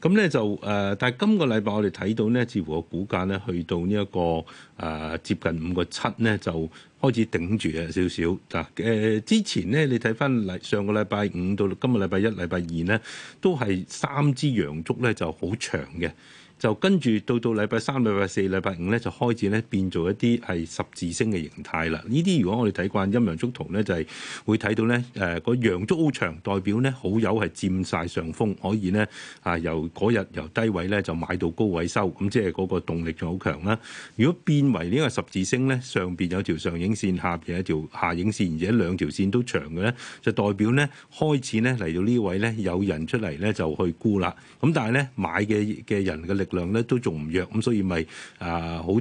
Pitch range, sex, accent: 90-115 Hz, male, native